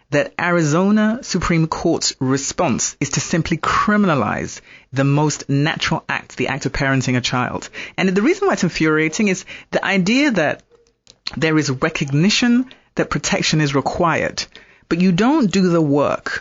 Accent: British